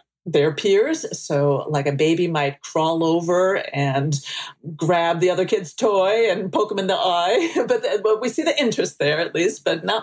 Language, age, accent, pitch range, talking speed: English, 40-59, American, 150-220 Hz, 190 wpm